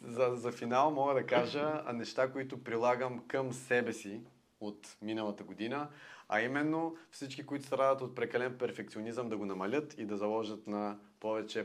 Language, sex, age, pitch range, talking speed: Bulgarian, male, 30-49, 105-130 Hz, 160 wpm